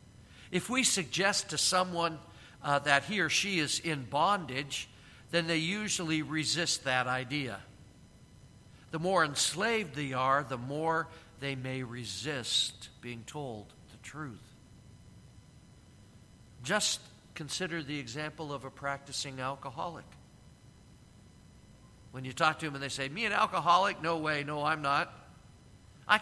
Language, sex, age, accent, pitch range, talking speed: English, male, 50-69, American, 120-155 Hz, 135 wpm